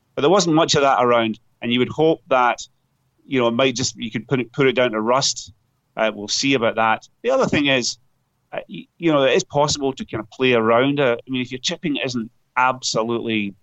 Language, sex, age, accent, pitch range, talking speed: English, male, 30-49, British, 120-155 Hz, 240 wpm